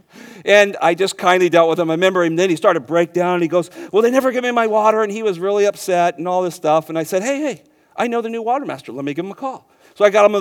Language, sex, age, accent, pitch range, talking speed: English, male, 40-59, American, 170-220 Hz, 330 wpm